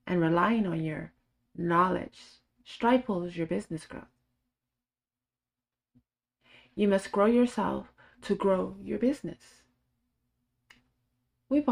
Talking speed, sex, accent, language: 90 wpm, female, American, English